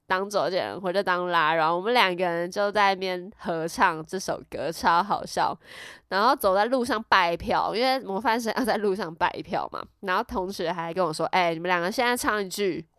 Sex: female